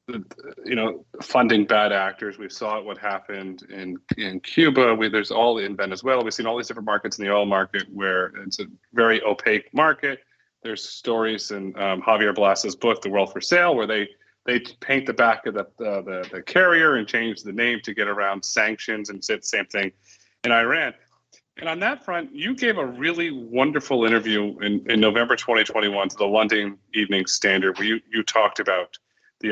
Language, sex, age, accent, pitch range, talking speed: English, male, 30-49, American, 100-120 Hz, 195 wpm